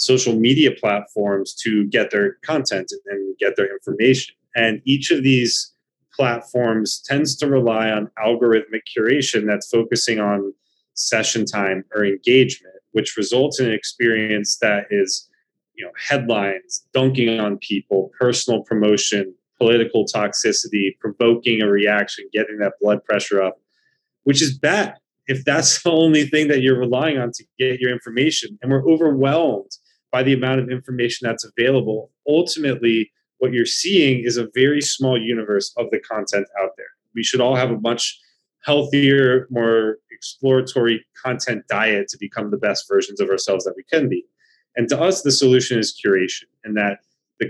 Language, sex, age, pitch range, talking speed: English, male, 30-49, 110-140 Hz, 160 wpm